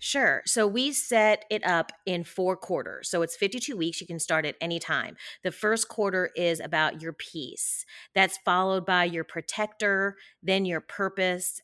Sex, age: female, 30-49